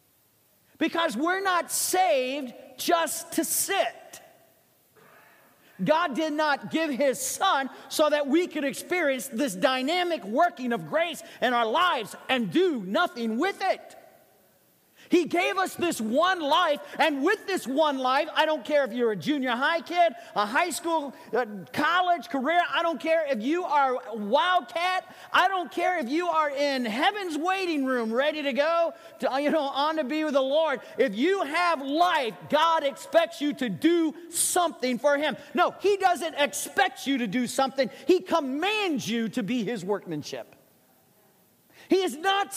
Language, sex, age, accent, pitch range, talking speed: English, male, 40-59, American, 240-335 Hz, 165 wpm